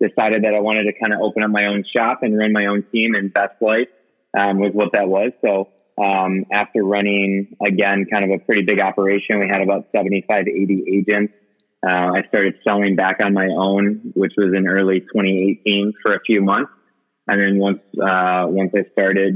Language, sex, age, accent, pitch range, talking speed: English, male, 20-39, American, 100-110 Hz, 210 wpm